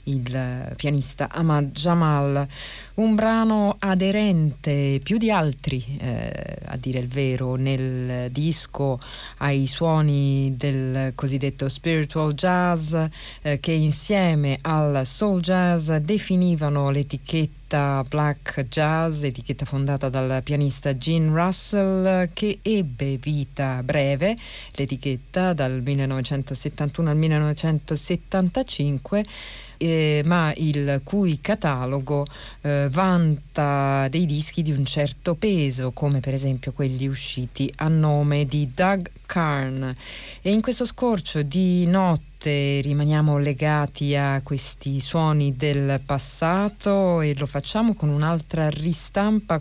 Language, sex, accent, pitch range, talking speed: Italian, female, native, 135-170 Hz, 110 wpm